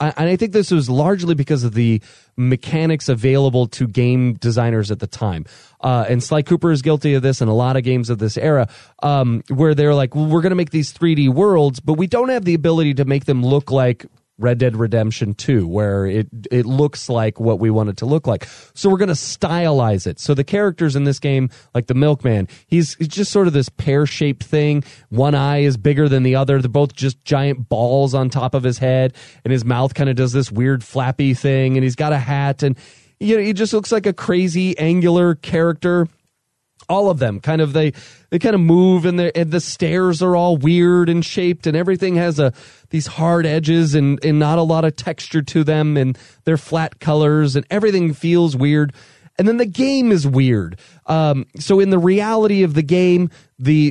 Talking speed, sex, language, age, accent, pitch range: 215 wpm, male, English, 30-49, American, 130-165 Hz